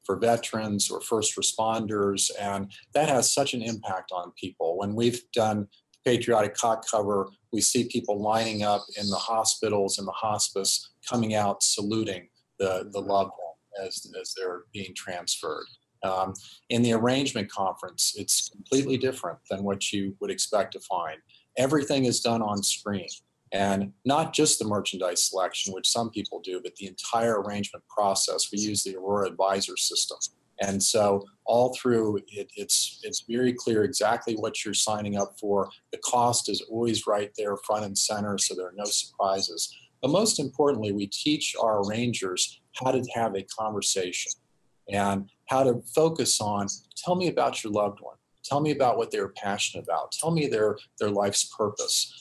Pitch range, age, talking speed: 100-120 Hz, 40-59, 170 wpm